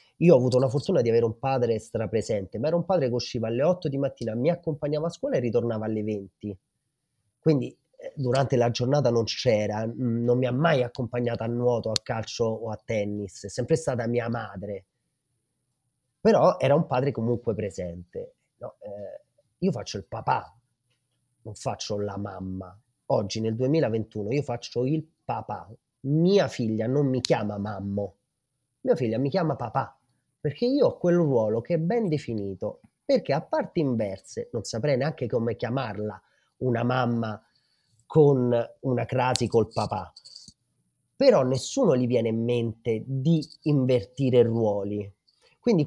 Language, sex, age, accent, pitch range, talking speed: Italian, male, 30-49, native, 115-140 Hz, 155 wpm